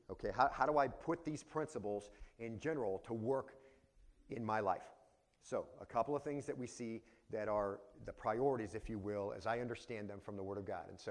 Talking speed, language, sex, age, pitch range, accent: 220 wpm, English, male, 40-59, 105-130 Hz, American